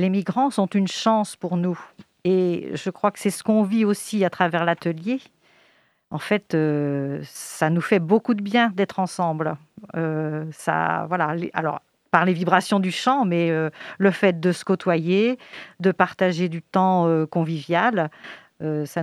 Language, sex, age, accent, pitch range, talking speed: French, female, 50-69, French, 165-200 Hz, 175 wpm